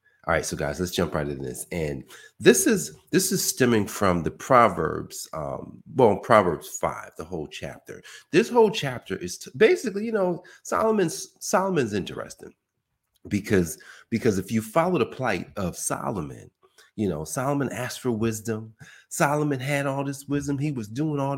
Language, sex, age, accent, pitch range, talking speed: English, male, 40-59, American, 125-205 Hz, 165 wpm